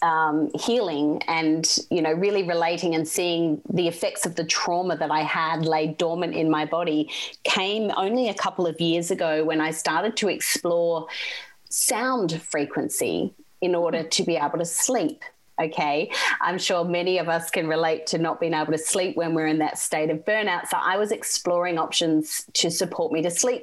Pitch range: 160-195 Hz